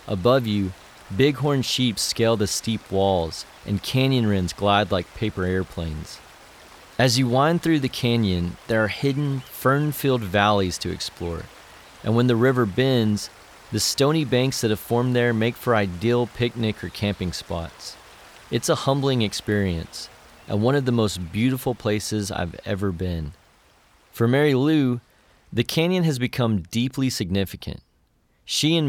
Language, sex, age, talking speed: English, male, 30-49, 150 wpm